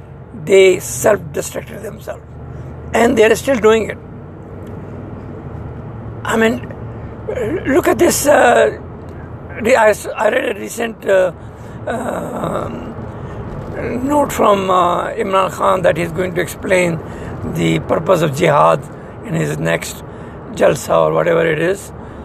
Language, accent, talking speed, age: English, Indian, 120 wpm, 60-79